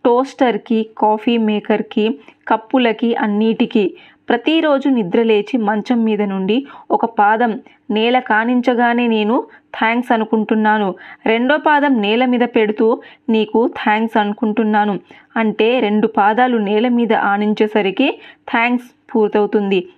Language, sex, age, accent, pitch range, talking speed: Telugu, female, 20-39, native, 215-260 Hz, 100 wpm